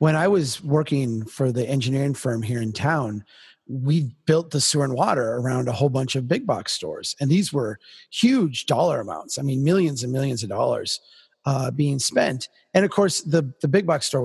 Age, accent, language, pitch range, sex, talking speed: 30-49, American, English, 130-155 Hz, male, 205 wpm